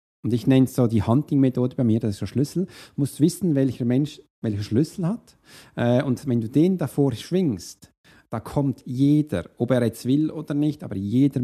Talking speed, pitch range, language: 200 wpm, 125-155 Hz, German